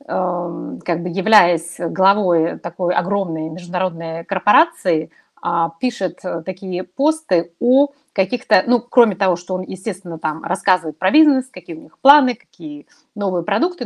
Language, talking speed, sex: Russian, 130 wpm, female